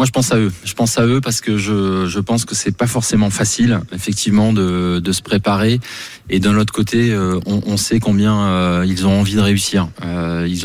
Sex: male